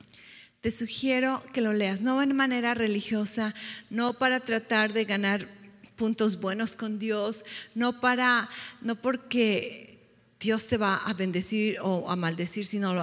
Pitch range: 205-255 Hz